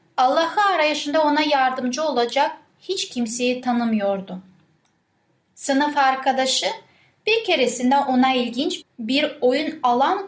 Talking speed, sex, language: 100 wpm, female, Turkish